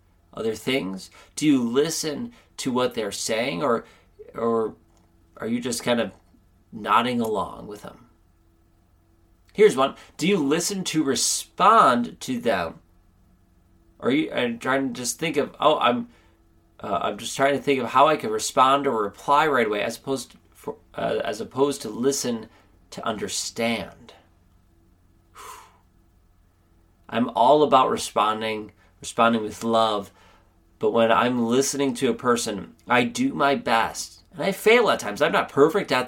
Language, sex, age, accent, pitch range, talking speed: English, male, 30-49, American, 85-135 Hz, 155 wpm